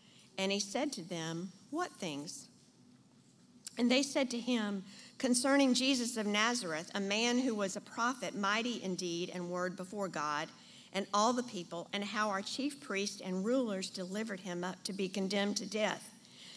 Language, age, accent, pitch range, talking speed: English, 50-69, American, 195-240 Hz, 175 wpm